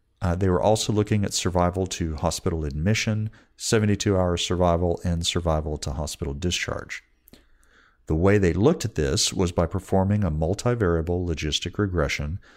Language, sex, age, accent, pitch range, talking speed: English, male, 40-59, American, 75-95 Hz, 145 wpm